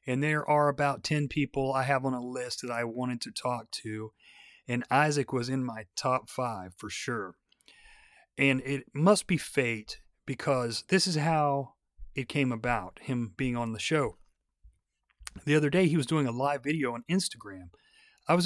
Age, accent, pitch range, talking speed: 30-49, American, 120-155 Hz, 180 wpm